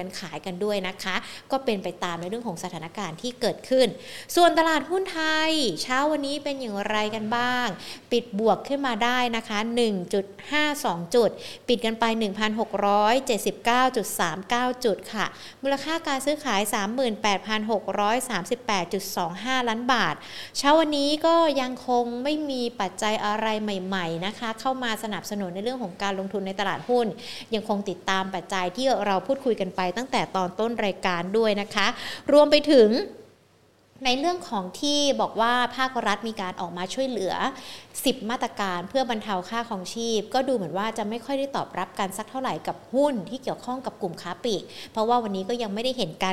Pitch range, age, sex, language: 195-250 Hz, 60-79, female, Thai